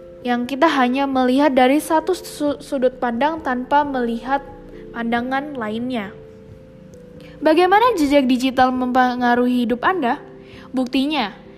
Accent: native